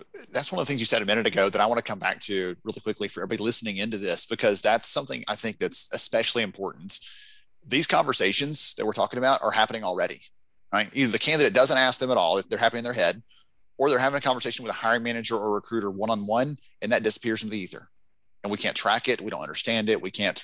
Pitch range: 100-120 Hz